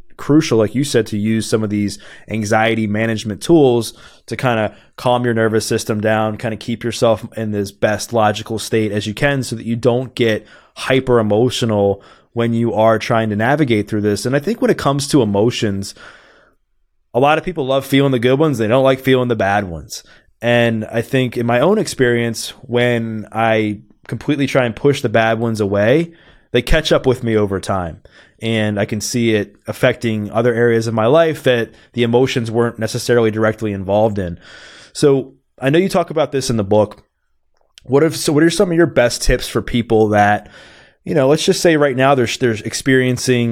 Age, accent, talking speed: 20-39, American, 205 wpm